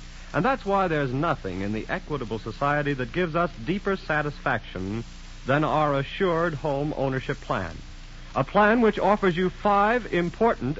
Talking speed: 150 wpm